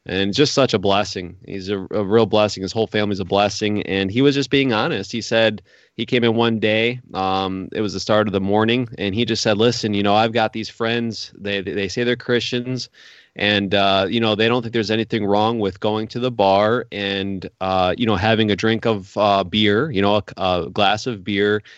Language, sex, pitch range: English, male, 100-120 Hz